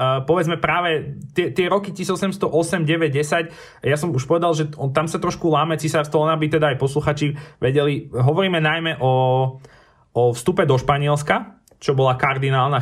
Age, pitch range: 20-39, 115-150 Hz